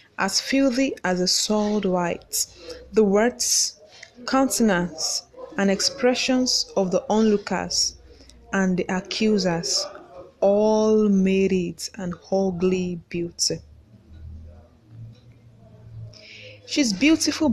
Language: English